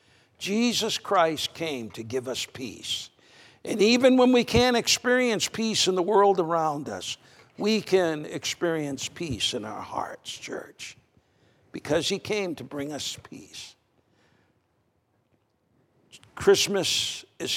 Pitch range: 140-215 Hz